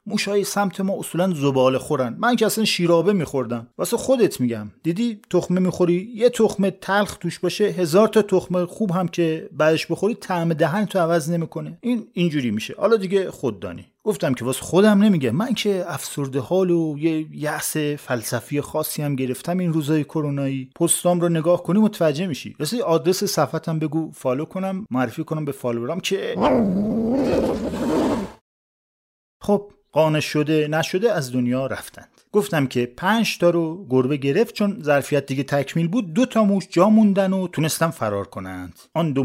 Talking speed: 165 wpm